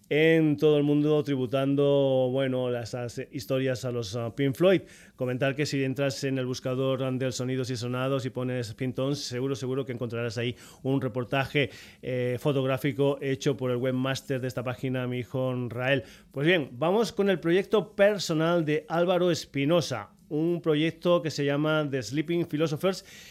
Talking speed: 175 wpm